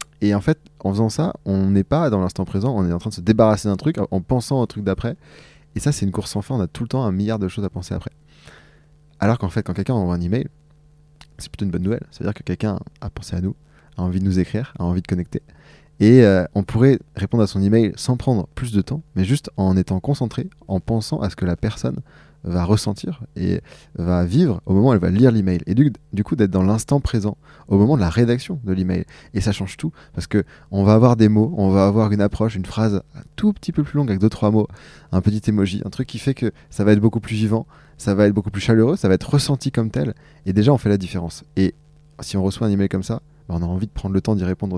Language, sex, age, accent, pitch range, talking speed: French, male, 20-39, French, 95-125 Hz, 270 wpm